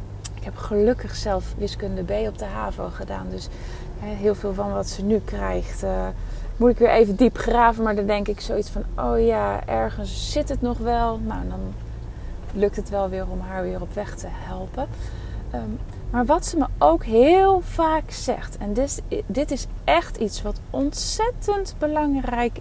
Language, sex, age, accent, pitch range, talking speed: Dutch, female, 30-49, Dutch, 175-250 Hz, 180 wpm